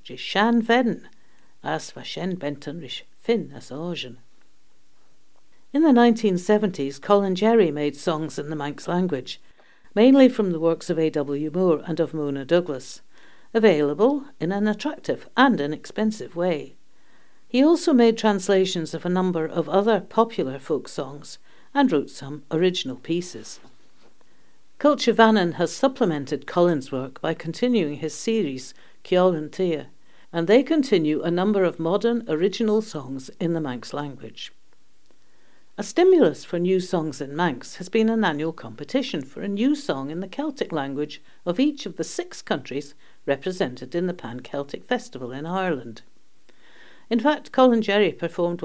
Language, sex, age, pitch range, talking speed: English, female, 60-79, 150-225 Hz, 135 wpm